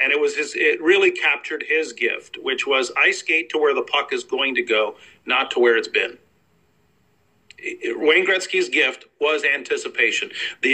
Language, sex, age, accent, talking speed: French, male, 50-69, American, 185 wpm